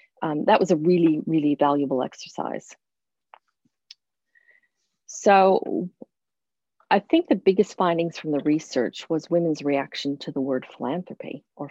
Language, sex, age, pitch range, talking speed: English, female, 40-59, 150-185 Hz, 130 wpm